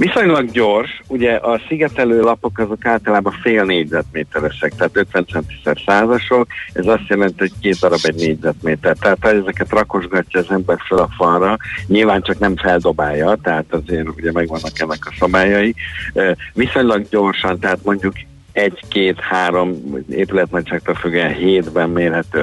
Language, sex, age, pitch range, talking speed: Hungarian, male, 60-79, 85-100 Hz, 135 wpm